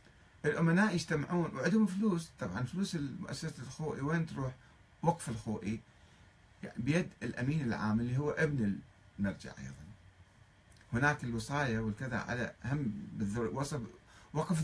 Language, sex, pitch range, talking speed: Arabic, male, 100-160 Hz, 115 wpm